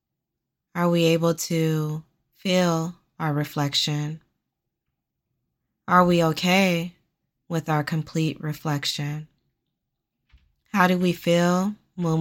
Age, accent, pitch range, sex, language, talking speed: 20-39, American, 145-170 Hz, female, English, 95 wpm